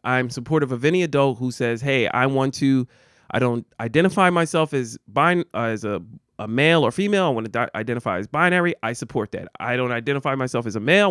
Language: English